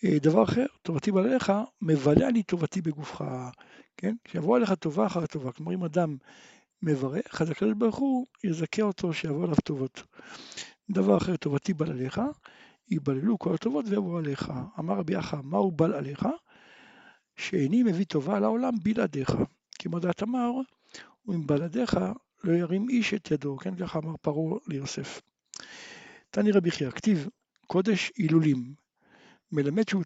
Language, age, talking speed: Hebrew, 60-79, 140 wpm